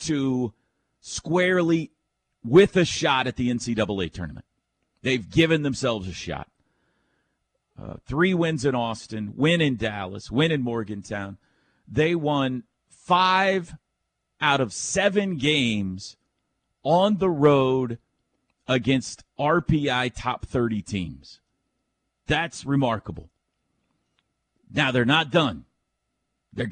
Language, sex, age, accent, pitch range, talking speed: English, male, 40-59, American, 115-170 Hz, 105 wpm